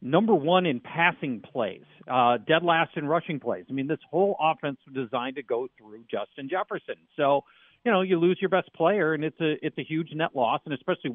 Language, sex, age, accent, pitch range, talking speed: English, male, 50-69, American, 130-190 Hz, 220 wpm